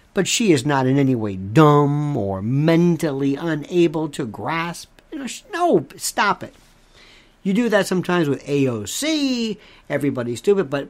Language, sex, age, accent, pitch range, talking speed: English, male, 60-79, American, 140-205 Hz, 140 wpm